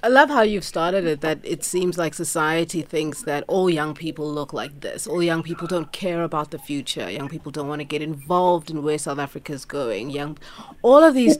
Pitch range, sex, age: 155-195 Hz, female, 30-49